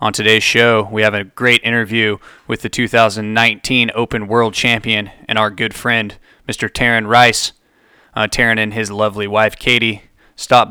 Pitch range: 110-120 Hz